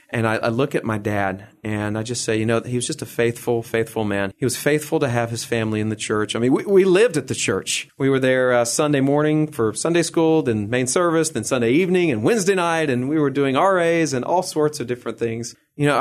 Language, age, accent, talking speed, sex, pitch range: English, 40-59, American, 260 wpm, male, 110-140 Hz